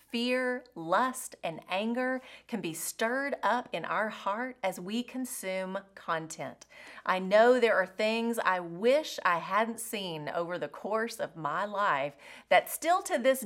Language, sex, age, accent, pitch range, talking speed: English, female, 30-49, American, 170-240 Hz, 155 wpm